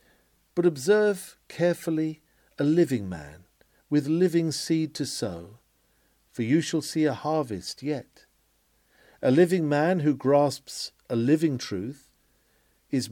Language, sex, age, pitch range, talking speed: English, male, 50-69, 120-170 Hz, 125 wpm